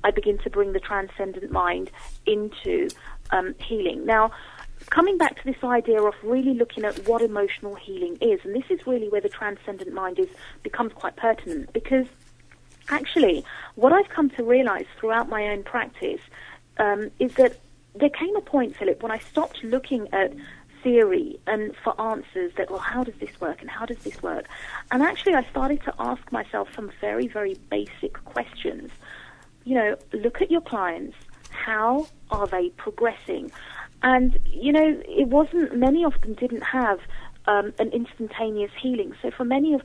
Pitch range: 210-295 Hz